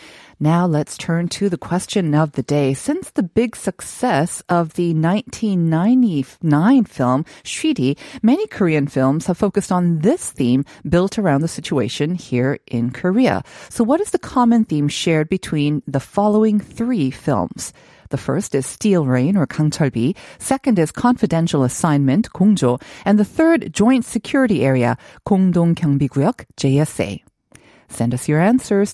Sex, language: female, Korean